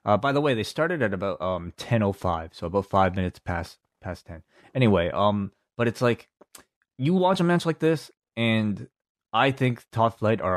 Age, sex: 20-39, male